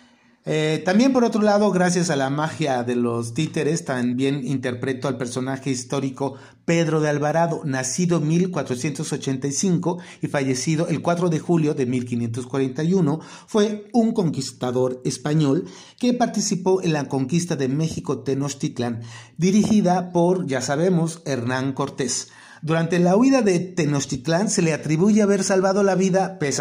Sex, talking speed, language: male, 140 wpm, Spanish